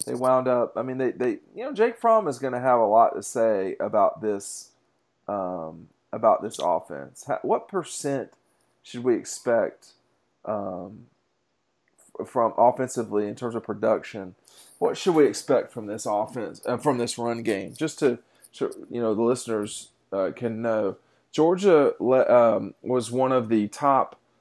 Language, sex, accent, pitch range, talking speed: English, male, American, 110-135 Hz, 160 wpm